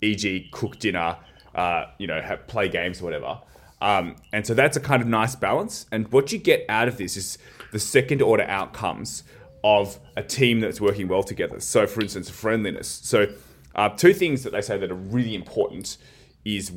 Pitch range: 100-125 Hz